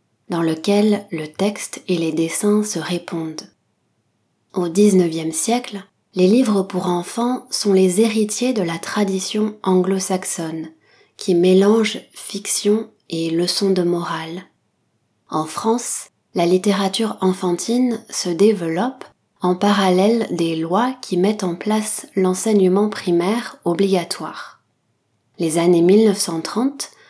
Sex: female